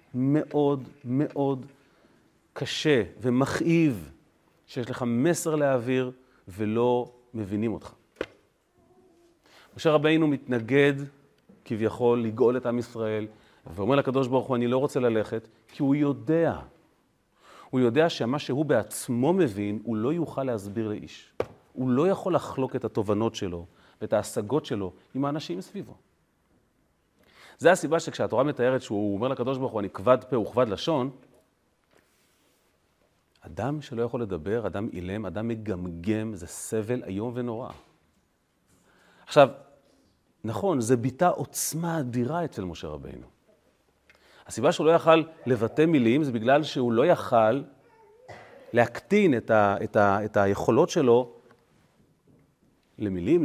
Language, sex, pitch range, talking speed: Hebrew, male, 110-145 Hz, 125 wpm